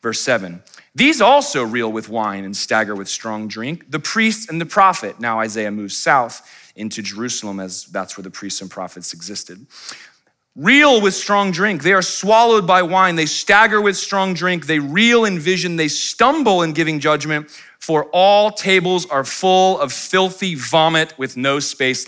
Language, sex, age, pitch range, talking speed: English, male, 30-49, 100-165 Hz, 175 wpm